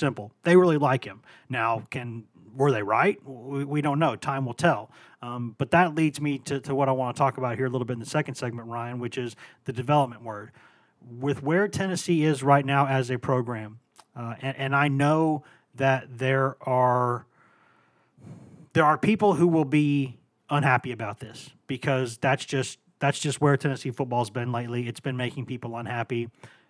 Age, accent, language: 30-49, American, English